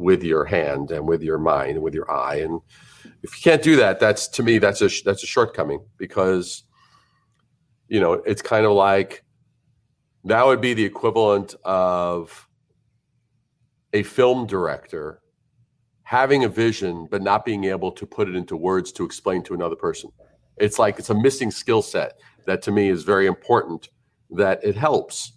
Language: English